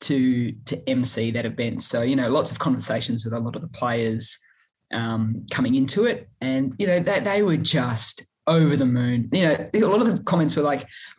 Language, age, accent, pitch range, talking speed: English, 30-49, Australian, 130-170 Hz, 225 wpm